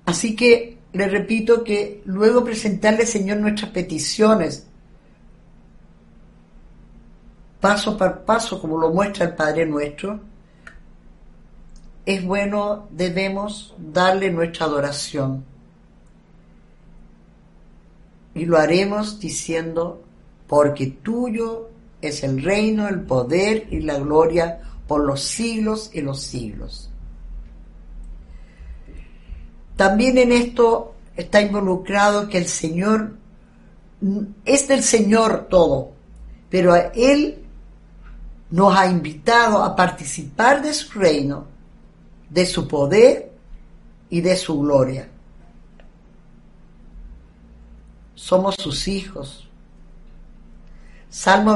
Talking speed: 90 wpm